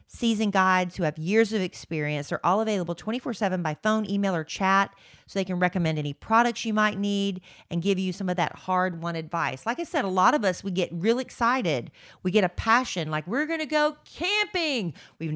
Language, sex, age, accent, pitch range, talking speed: English, female, 40-59, American, 155-200 Hz, 220 wpm